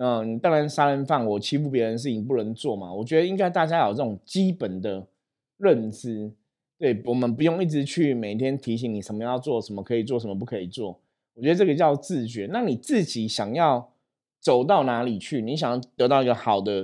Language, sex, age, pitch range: Chinese, male, 20-39, 105-140 Hz